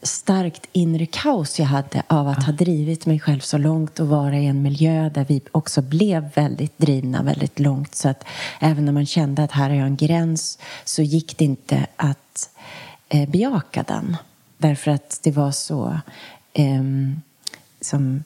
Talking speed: 170 wpm